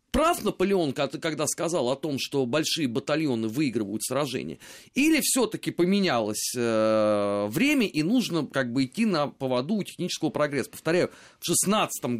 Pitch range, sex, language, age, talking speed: 125-170 Hz, male, Russian, 30-49, 140 wpm